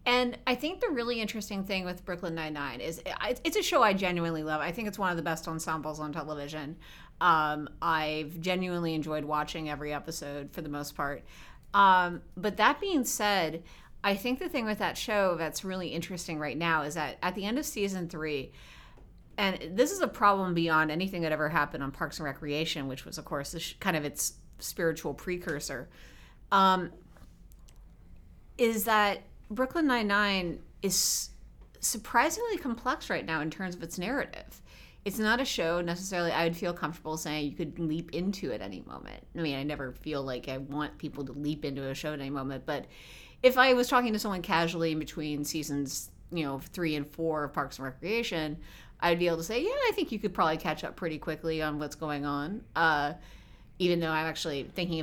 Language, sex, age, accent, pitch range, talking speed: English, female, 30-49, American, 150-195 Hz, 195 wpm